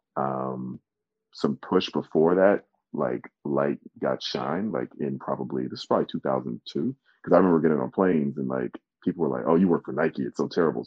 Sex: male